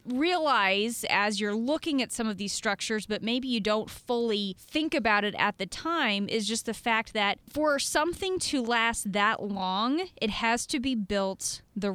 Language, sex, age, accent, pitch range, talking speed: English, female, 20-39, American, 205-255 Hz, 185 wpm